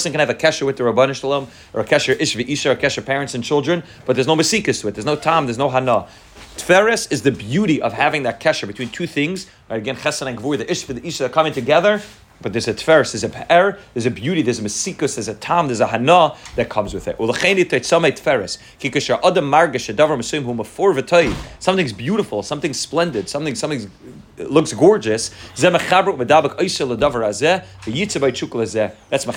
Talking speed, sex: 175 wpm, male